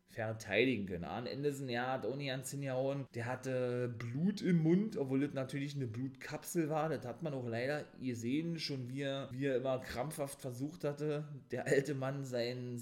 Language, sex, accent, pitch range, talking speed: German, male, German, 115-150 Hz, 195 wpm